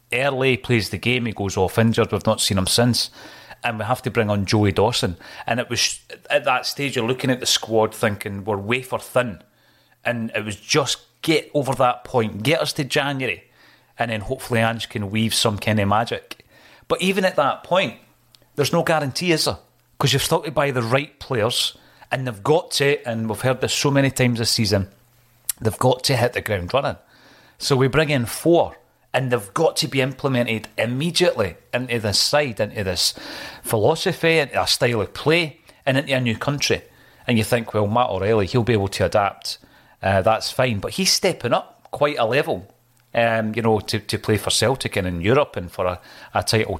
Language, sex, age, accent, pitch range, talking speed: English, male, 30-49, British, 110-135 Hz, 205 wpm